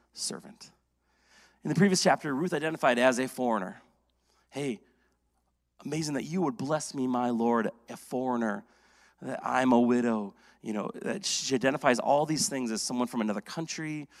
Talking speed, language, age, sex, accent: 160 wpm, English, 30-49, male, American